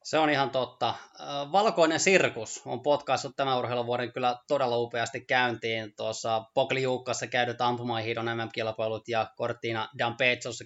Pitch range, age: 110-140 Hz, 20-39